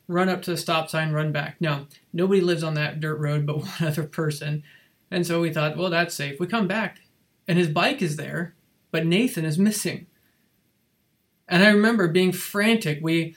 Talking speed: 195 wpm